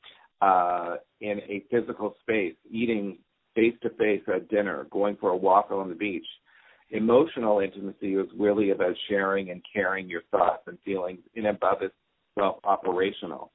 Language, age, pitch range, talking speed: English, 50-69, 95-110 Hz, 140 wpm